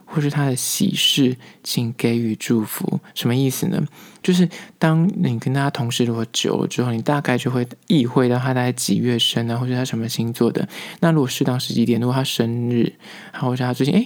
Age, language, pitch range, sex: 20-39, Chinese, 115-150 Hz, male